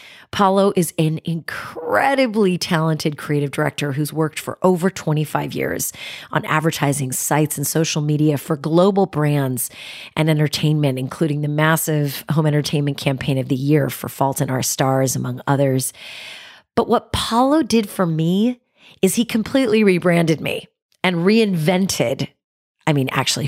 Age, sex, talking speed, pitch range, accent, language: 30-49, female, 145 wpm, 145-190 Hz, American, English